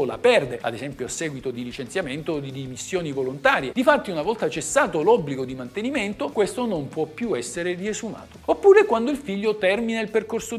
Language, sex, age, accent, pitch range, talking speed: Italian, male, 50-69, native, 150-235 Hz, 180 wpm